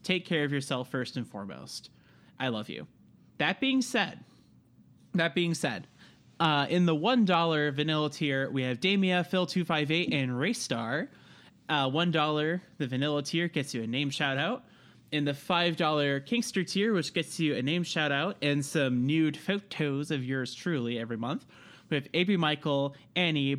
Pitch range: 135-180 Hz